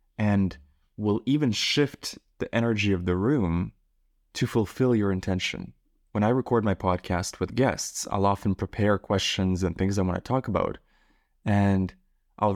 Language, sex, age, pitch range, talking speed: English, male, 20-39, 95-115 Hz, 160 wpm